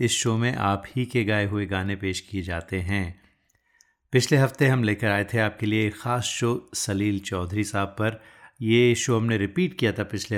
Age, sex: 30-49, male